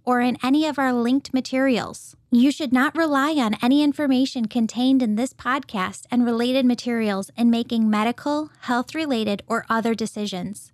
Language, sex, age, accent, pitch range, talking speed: English, female, 10-29, American, 220-275 Hz, 155 wpm